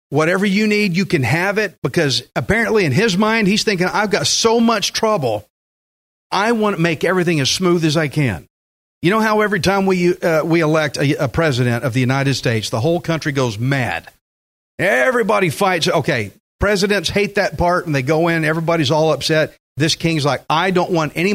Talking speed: 195 wpm